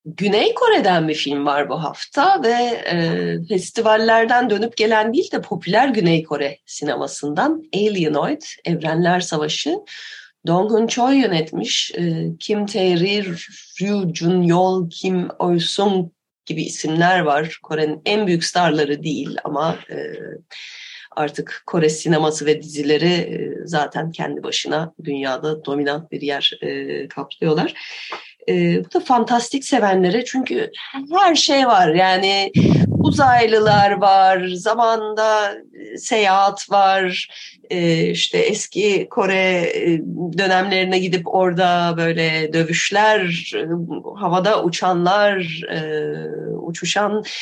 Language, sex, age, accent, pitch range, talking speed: Turkish, female, 30-49, native, 160-220 Hz, 105 wpm